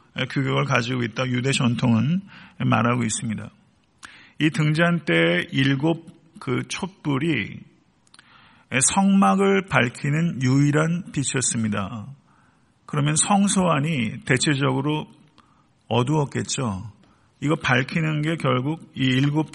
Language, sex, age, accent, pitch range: Korean, male, 50-69, native, 125-165 Hz